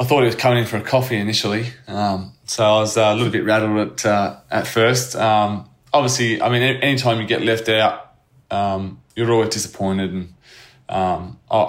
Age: 20-39